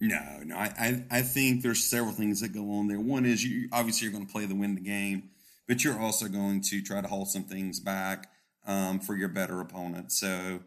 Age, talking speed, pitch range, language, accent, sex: 30-49, 235 wpm, 95-110 Hz, English, American, male